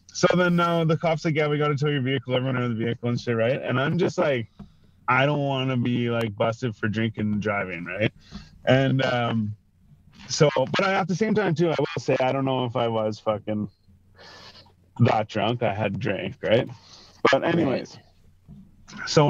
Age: 20-39